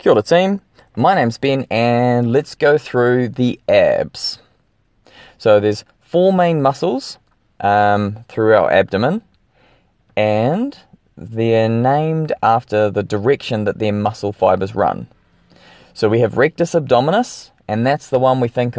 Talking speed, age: 135 wpm, 20-39